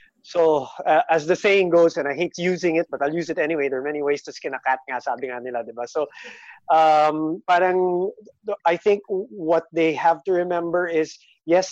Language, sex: English, male